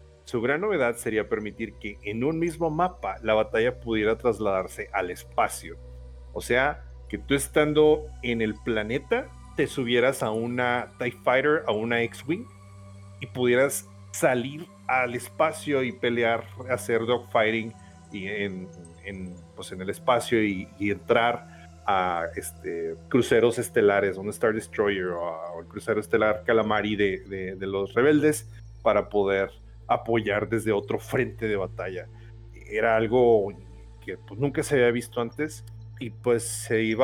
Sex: male